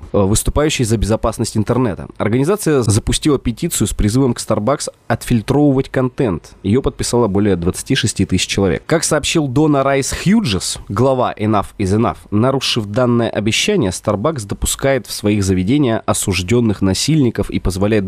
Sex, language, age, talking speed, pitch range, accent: male, Russian, 20-39, 135 wpm, 100-130 Hz, native